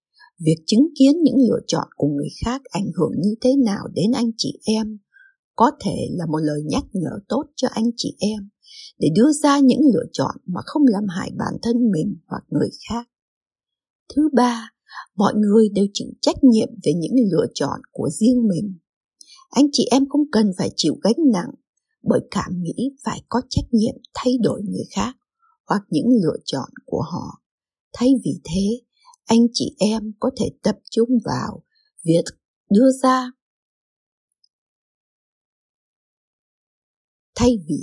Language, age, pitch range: English, 60-79, 205-265 Hz